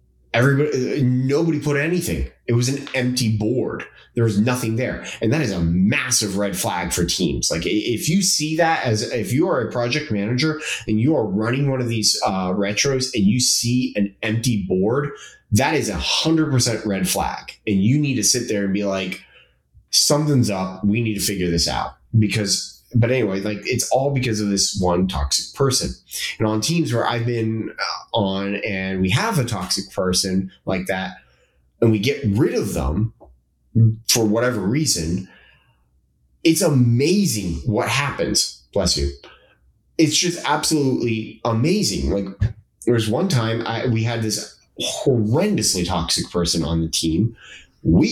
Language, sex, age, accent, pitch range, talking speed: English, male, 30-49, American, 95-130 Hz, 170 wpm